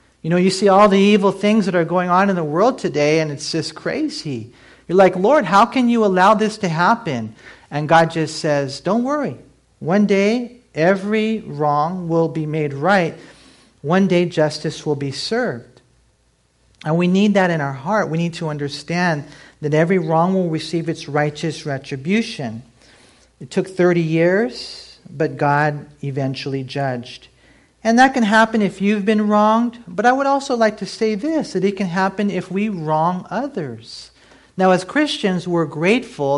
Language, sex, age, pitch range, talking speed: English, male, 50-69, 145-205 Hz, 175 wpm